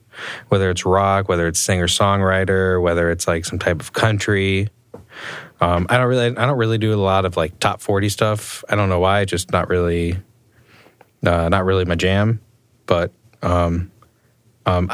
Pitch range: 95-115 Hz